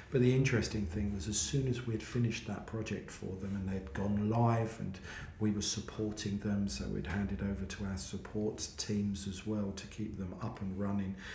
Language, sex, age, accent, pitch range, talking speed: English, male, 40-59, British, 95-110 Hz, 205 wpm